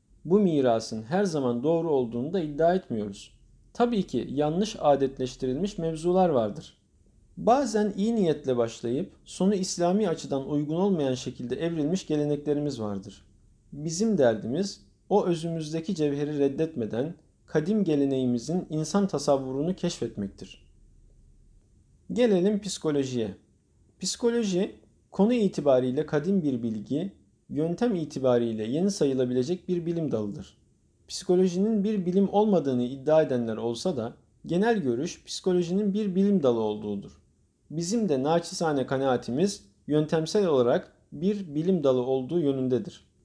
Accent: native